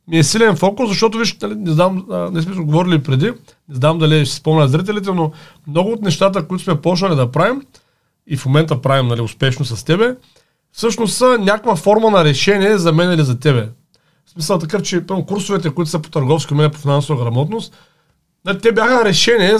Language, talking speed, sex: Bulgarian, 195 wpm, male